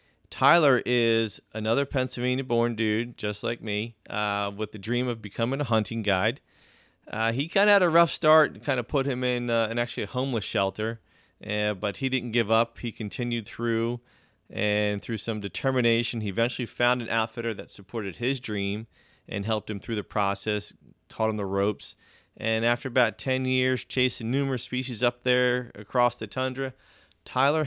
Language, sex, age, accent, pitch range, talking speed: English, male, 30-49, American, 105-125 Hz, 180 wpm